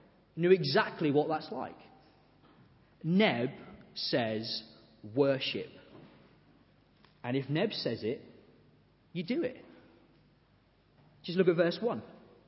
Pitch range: 145-185 Hz